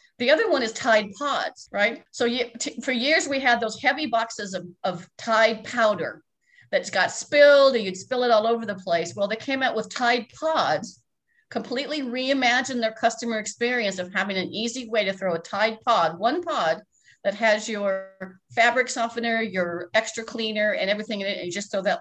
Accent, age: American, 50-69